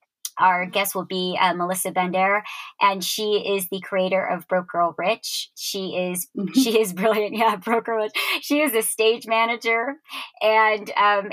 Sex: male